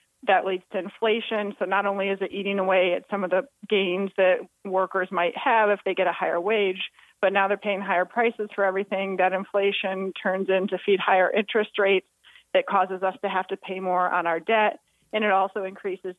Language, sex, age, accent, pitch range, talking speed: English, female, 30-49, American, 180-200 Hz, 210 wpm